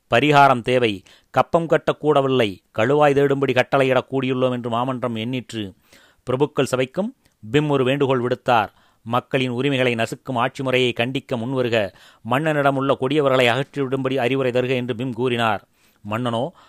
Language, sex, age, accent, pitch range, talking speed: Tamil, male, 30-49, native, 115-135 Hz, 120 wpm